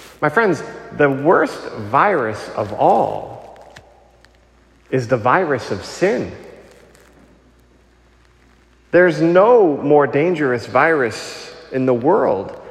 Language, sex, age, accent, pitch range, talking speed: English, male, 40-59, American, 110-145 Hz, 95 wpm